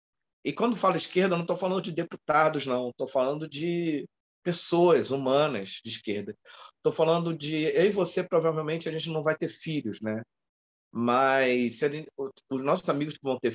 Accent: Brazilian